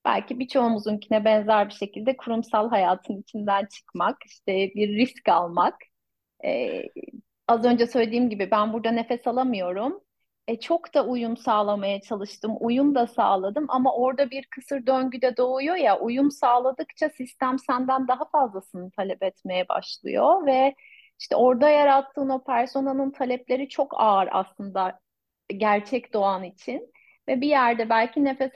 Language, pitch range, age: Turkish, 215-275 Hz, 30-49